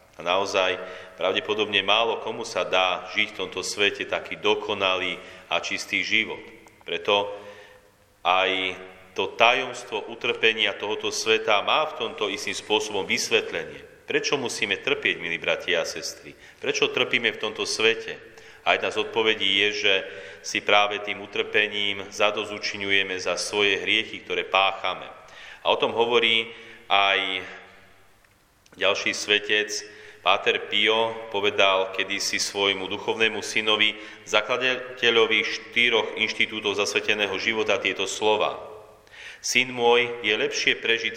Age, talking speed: 40-59, 120 wpm